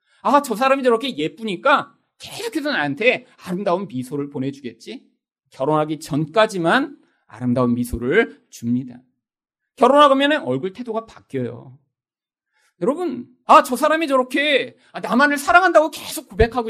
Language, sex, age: Korean, male, 40-59